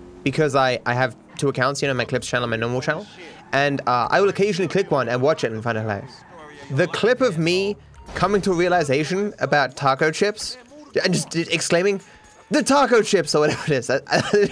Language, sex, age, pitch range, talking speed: English, male, 20-39, 135-195 Hz, 210 wpm